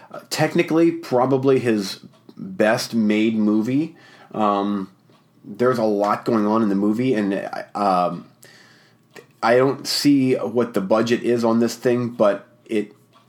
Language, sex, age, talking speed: English, male, 30-49, 130 wpm